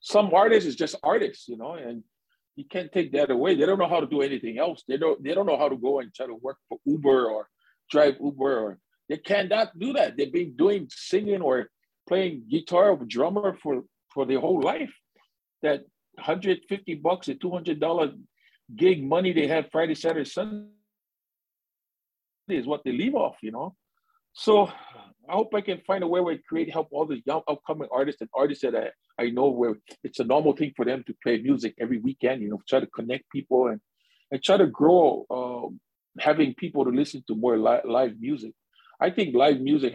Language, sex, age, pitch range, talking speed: English, male, 50-69, 130-190 Hz, 210 wpm